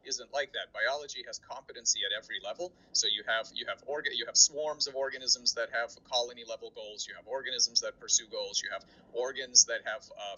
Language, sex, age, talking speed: English, male, 30-49, 215 wpm